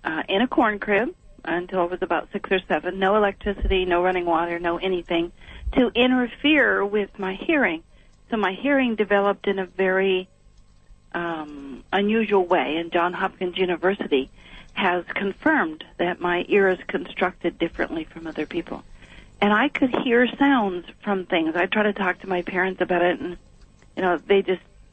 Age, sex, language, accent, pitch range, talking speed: 50-69, female, English, American, 175-215 Hz, 170 wpm